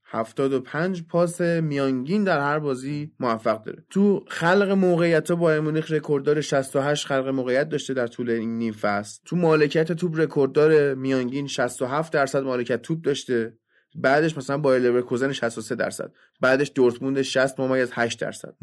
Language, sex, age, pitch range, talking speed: Persian, male, 20-39, 130-170 Hz, 145 wpm